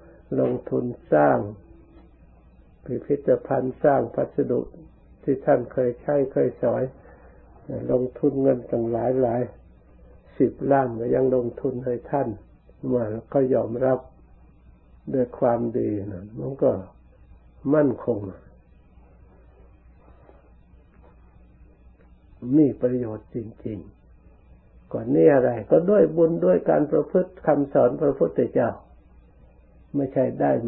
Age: 60-79